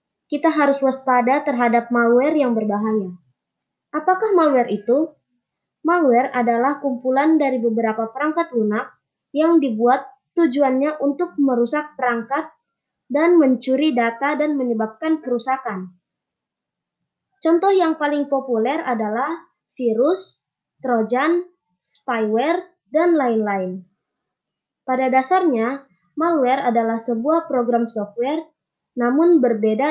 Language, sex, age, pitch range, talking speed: Indonesian, male, 20-39, 235-315 Hz, 95 wpm